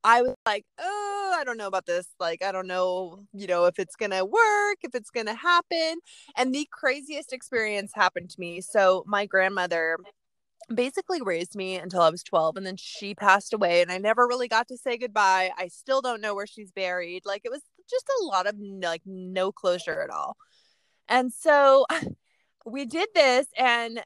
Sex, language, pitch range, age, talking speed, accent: female, English, 185-255 Hz, 20-39, 200 wpm, American